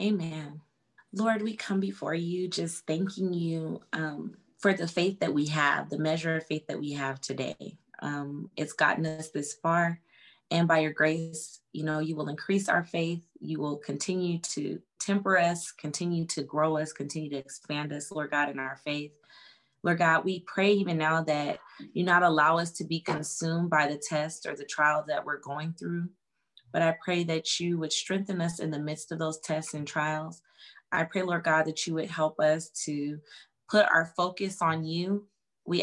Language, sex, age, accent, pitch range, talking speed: English, female, 20-39, American, 150-175 Hz, 195 wpm